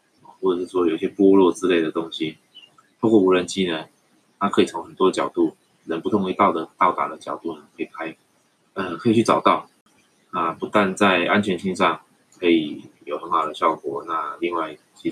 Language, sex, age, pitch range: Chinese, male, 20-39, 90-110 Hz